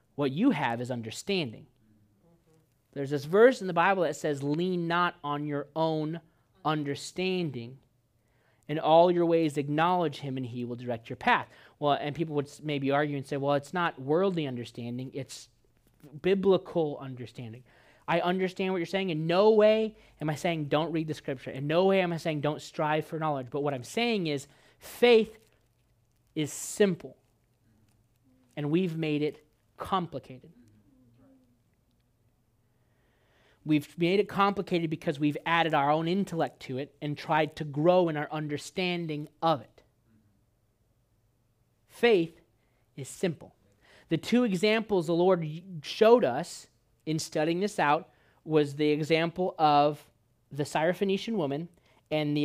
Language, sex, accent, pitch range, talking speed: English, male, American, 125-170 Hz, 150 wpm